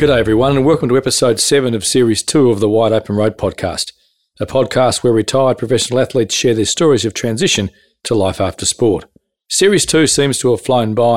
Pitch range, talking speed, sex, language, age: 105-130 Hz, 205 wpm, male, English, 40-59